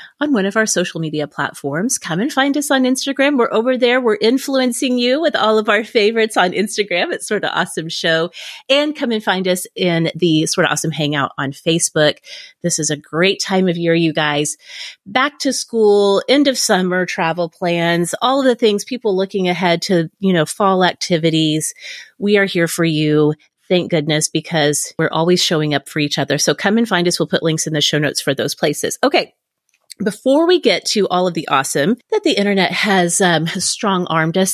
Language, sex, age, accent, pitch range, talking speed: English, female, 30-49, American, 165-245 Hz, 210 wpm